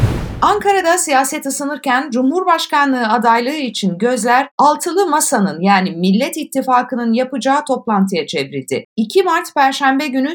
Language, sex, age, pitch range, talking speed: Turkish, female, 50-69, 200-290 Hz, 110 wpm